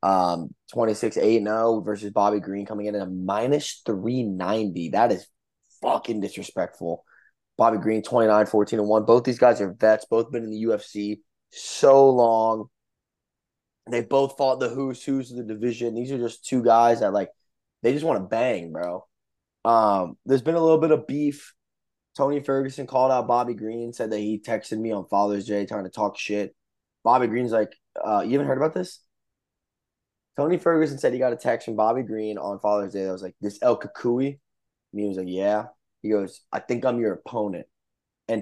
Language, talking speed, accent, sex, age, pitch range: English, 190 wpm, American, male, 20-39, 105-125 Hz